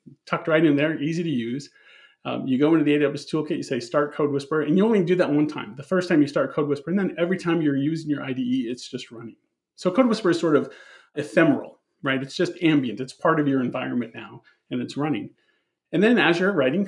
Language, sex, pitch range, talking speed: English, male, 135-170 Hz, 245 wpm